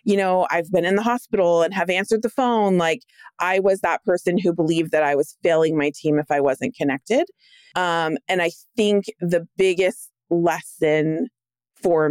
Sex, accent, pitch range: female, American, 150-180 Hz